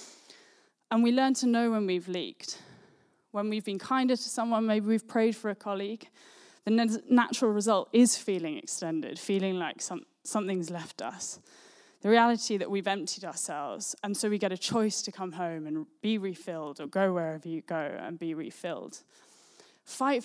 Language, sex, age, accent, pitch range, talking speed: English, female, 10-29, British, 180-240 Hz, 170 wpm